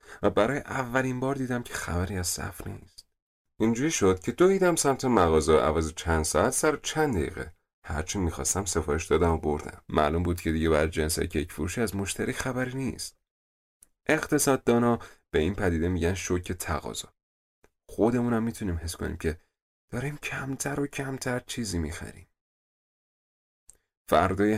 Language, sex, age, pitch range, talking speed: Persian, male, 30-49, 85-120 Hz, 145 wpm